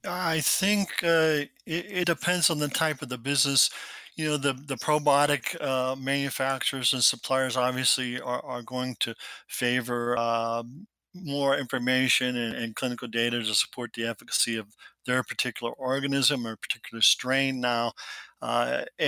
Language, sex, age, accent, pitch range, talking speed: English, male, 50-69, American, 120-140 Hz, 150 wpm